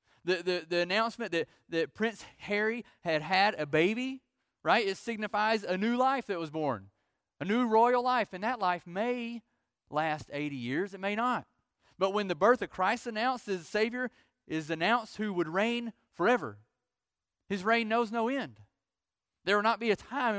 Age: 30-49